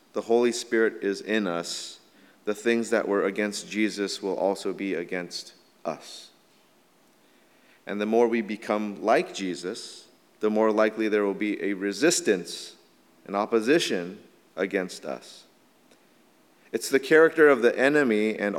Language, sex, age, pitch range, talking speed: English, male, 30-49, 105-125 Hz, 140 wpm